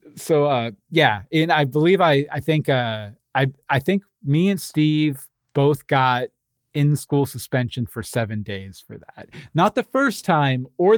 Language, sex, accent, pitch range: English, male, American, 130-165 Hz